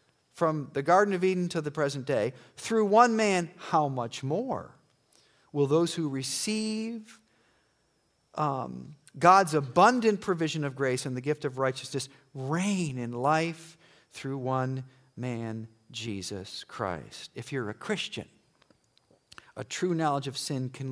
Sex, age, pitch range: male, 50-69, 115-155 Hz